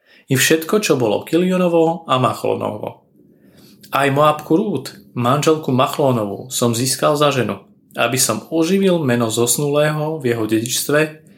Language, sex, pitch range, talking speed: Slovak, male, 120-160 Hz, 125 wpm